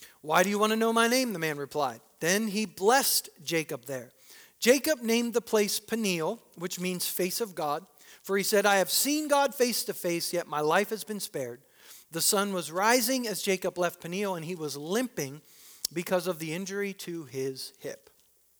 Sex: male